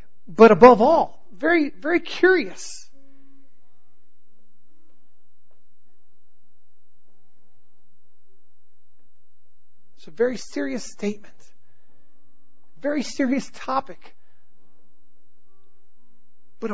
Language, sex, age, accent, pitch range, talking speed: English, male, 40-59, American, 135-210 Hz, 55 wpm